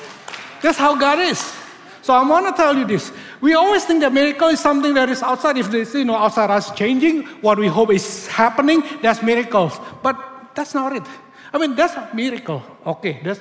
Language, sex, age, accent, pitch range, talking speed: English, male, 60-79, Indonesian, 165-265 Hz, 205 wpm